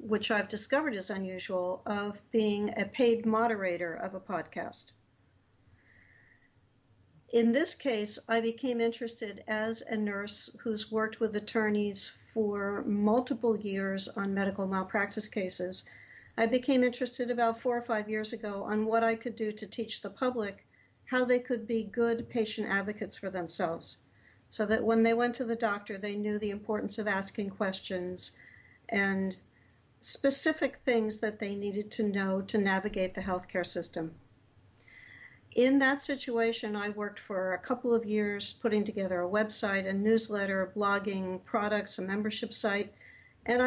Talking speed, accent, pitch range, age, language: 150 wpm, American, 195-230 Hz, 60-79, English